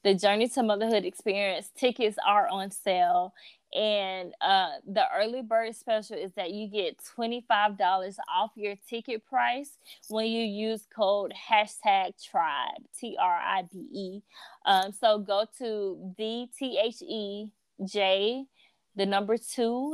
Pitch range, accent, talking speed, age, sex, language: 195-235 Hz, American, 125 wpm, 20-39, female, English